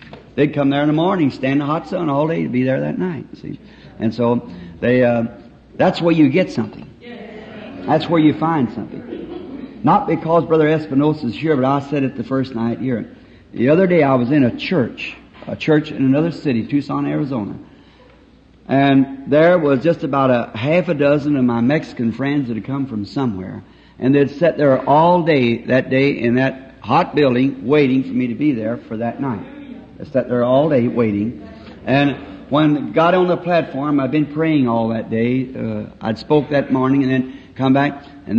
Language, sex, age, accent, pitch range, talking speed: English, male, 60-79, American, 130-160 Hz, 200 wpm